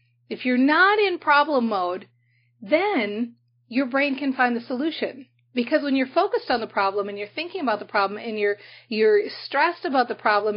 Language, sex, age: English, female, 40-59